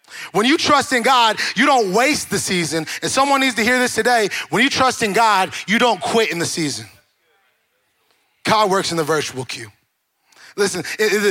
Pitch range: 215-265 Hz